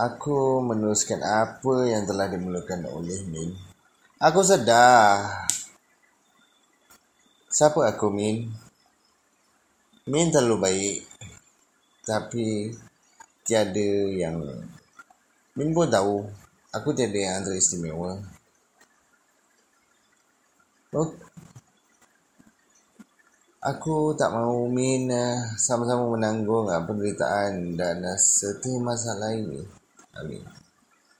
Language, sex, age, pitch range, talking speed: Malay, male, 30-49, 95-115 Hz, 75 wpm